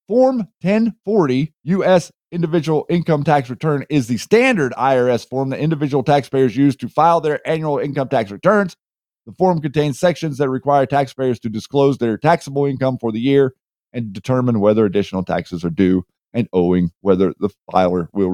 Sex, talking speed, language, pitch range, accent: male, 165 wpm, English, 130-170 Hz, American